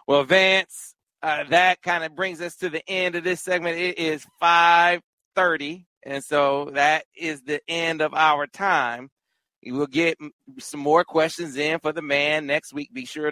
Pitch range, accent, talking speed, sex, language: 120-155 Hz, American, 180 wpm, male, English